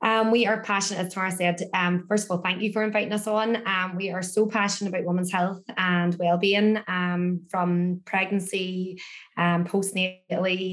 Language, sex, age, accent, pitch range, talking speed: English, female, 20-39, Irish, 175-190 Hz, 180 wpm